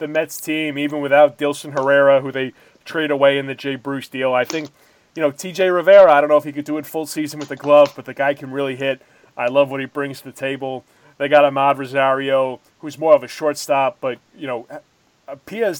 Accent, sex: American, male